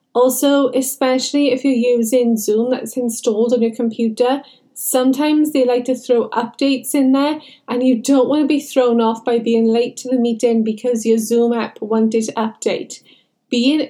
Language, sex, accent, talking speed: English, female, British, 175 wpm